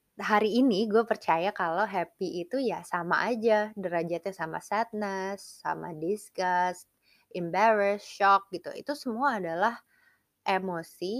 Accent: native